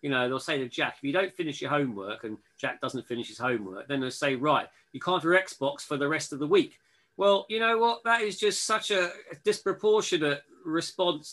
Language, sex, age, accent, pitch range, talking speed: English, male, 40-59, British, 130-175 Hz, 230 wpm